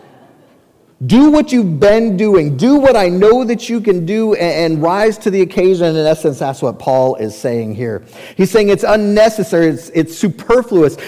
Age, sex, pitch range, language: 40-59, male, 125-185 Hz, English